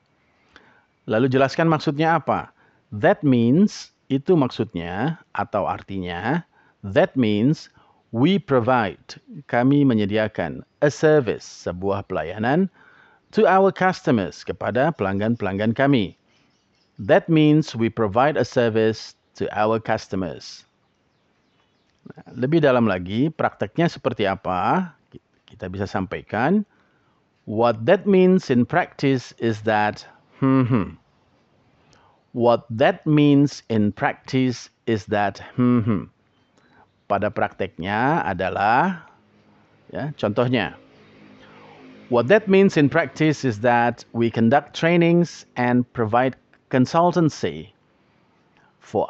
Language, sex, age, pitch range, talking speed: English, male, 50-69, 115-155 Hz, 100 wpm